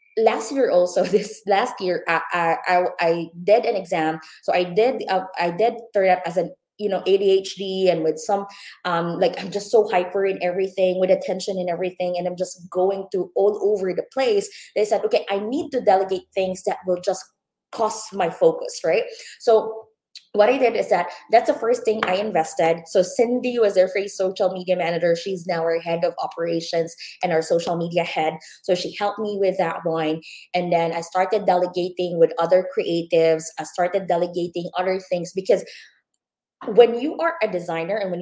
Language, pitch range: English, 175-215 Hz